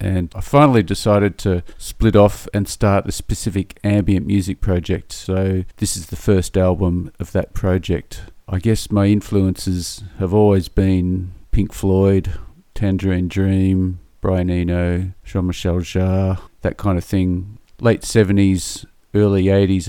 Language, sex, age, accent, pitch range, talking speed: English, male, 40-59, Australian, 90-105 Hz, 140 wpm